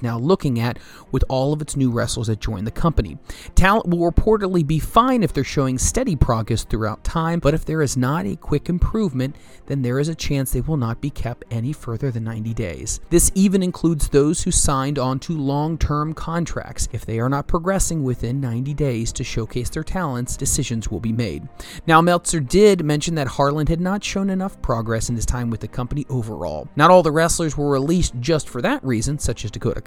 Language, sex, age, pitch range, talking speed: English, male, 30-49, 115-160 Hz, 210 wpm